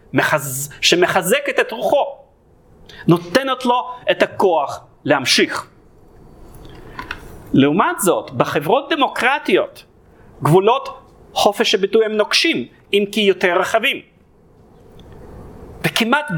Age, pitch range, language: 40-59, 160-230 Hz, Hebrew